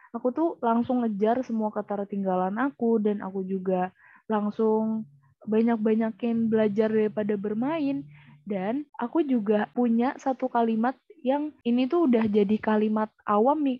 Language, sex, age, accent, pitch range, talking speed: Indonesian, female, 20-39, native, 215-265 Hz, 125 wpm